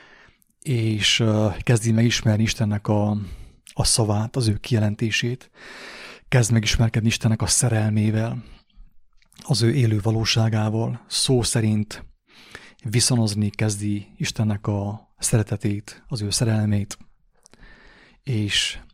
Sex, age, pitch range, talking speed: male, 30-49, 105-120 Hz, 95 wpm